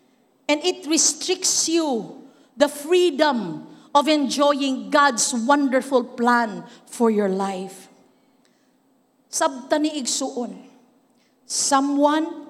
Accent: Filipino